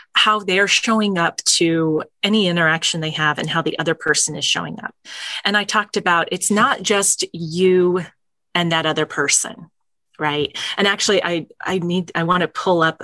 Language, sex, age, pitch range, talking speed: English, female, 30-49, 160-200 Hz, 185 wpm